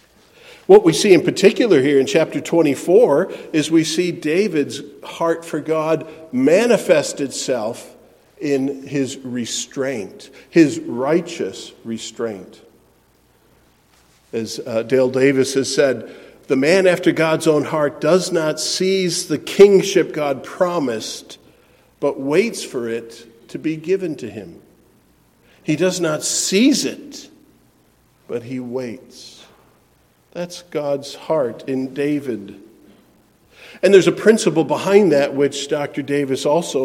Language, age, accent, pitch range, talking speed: English, 50-69, American, 135-185 Hz, 120 wpm